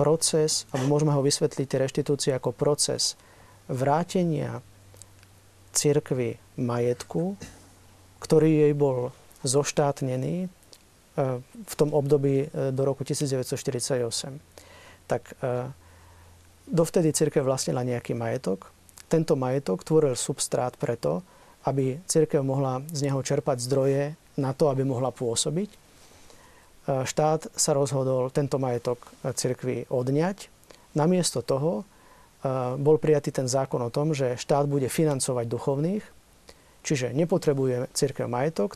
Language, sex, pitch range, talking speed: Slovak, male, 125-155 Hz, 105 wpm